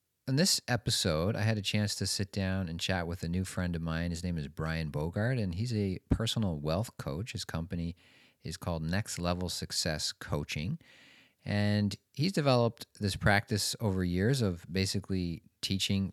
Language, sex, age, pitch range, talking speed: English, male, 40-59, 85-105 Hz, 175 wpm